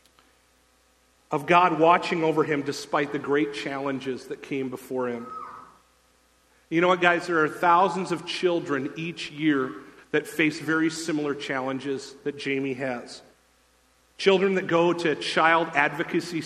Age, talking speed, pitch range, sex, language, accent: 40-59, 140 wpm, 145-165 Hz, male, English, American